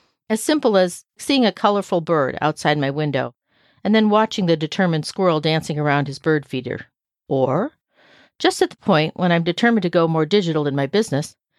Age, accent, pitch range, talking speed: 50-69, American, 145-205 Hz, 185 wpm